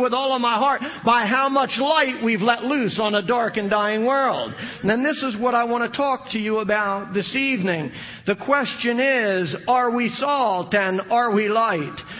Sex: male